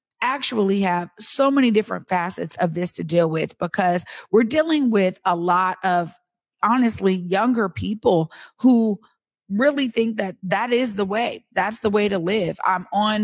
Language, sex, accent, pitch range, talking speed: English, female, American, 190-235 Hz, 165 wpm